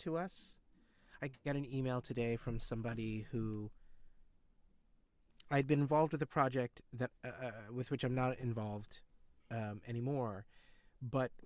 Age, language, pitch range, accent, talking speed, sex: 30-49, English, 115-145 Hz, American, 145 wpm, male